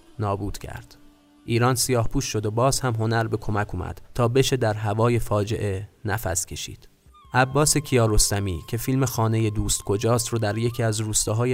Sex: male